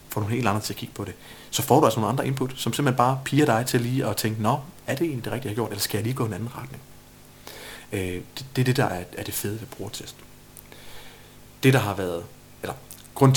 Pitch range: 100-125 Hz